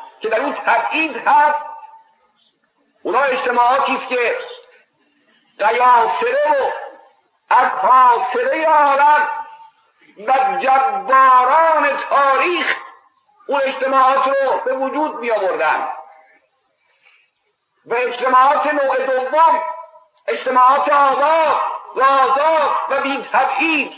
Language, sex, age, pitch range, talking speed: Persian, male, 50-69, 255-320 Hz, 75 wpm